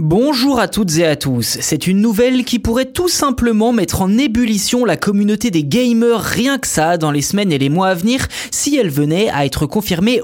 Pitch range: 160-240 Hz